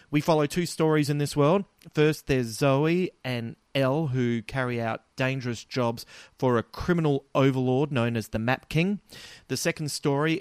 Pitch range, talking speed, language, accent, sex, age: 110-145 Hz, 165 wpm, English, Australian, male, 30-49